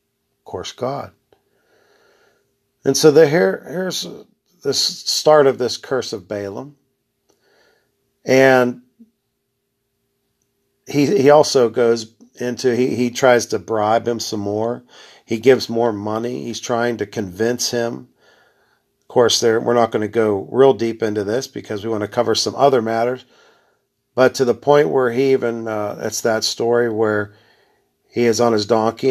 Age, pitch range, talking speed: 50-69, 110-130 Hz, 155 wpm